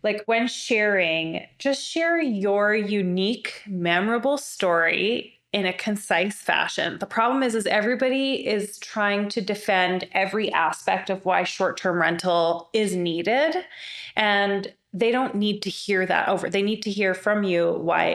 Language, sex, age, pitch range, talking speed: English, female, 20-39, 185-220 Hz, 150 wpm